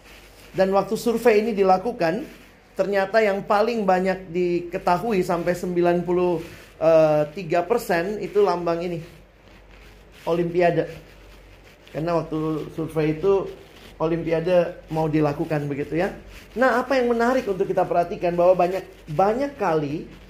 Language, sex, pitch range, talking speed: Indonesian, male, 155-200 Hz, 110 wpm